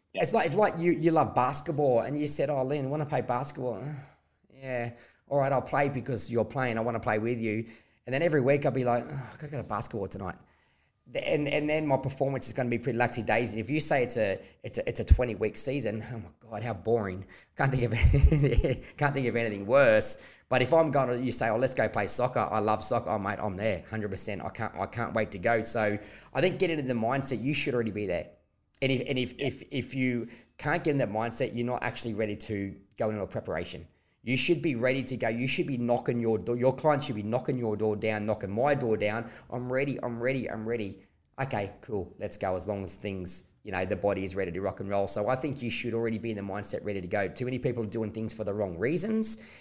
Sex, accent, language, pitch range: male, Australian, English, 105-130 Hz